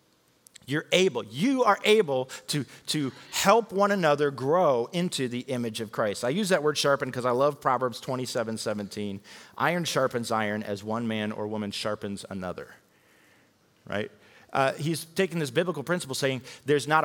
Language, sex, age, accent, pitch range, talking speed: English, male, 40-59, American, 115-180 Hz, 165 wpm